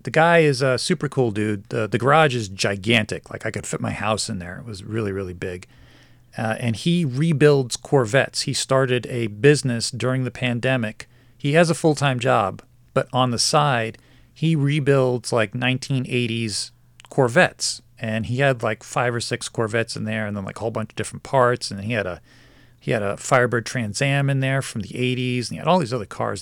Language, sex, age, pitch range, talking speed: English, male, 40-59, 115-135 Hz, 205 wpm